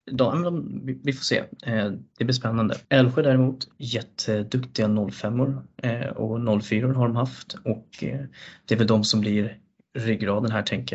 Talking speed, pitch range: 140 wpm, 105-125 Hz